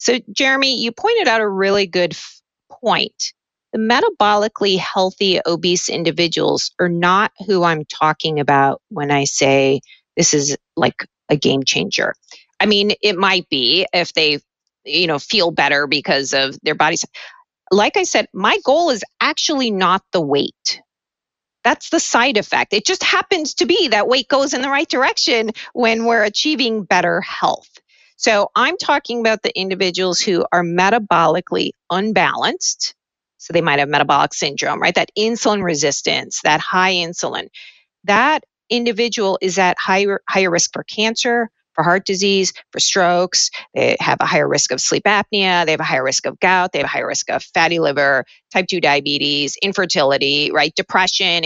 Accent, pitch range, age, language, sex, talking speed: American, 165-230 Hz, 40-59, English, female, 165 wpm